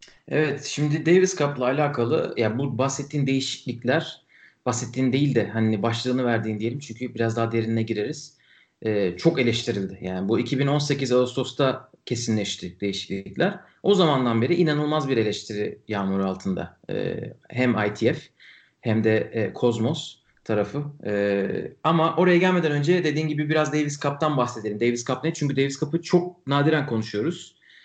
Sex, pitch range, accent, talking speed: male, 115-155 Hz, native, 145 wpm